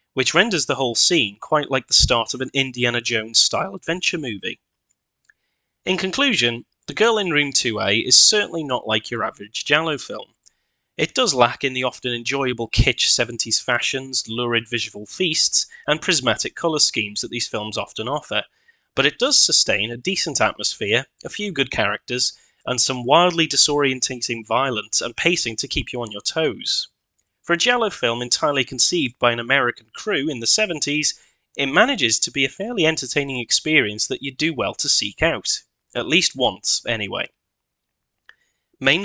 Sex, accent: male, British